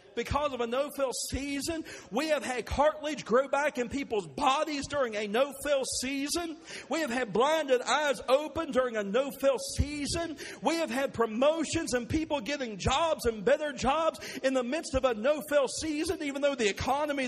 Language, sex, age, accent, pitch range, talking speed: English, male, 50-69, American, 255-305 Hz, 175 wpm